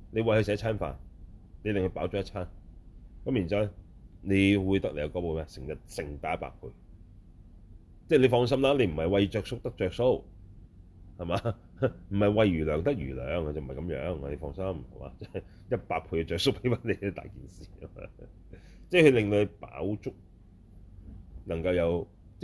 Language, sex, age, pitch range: Chinese, male, 30-49, 85-100 Hz